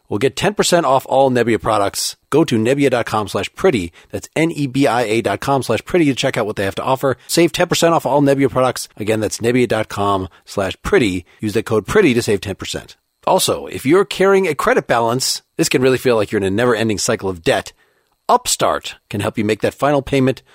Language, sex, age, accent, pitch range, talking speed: English, male, 40-59, American, 115-150 Hz, 195 wpm